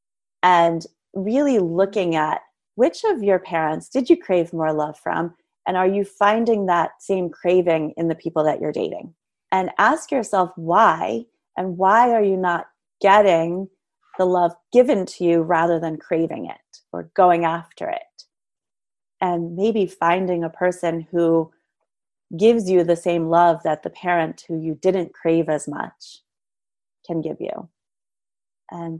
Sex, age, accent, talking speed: female, 30-49, American, 155 wpm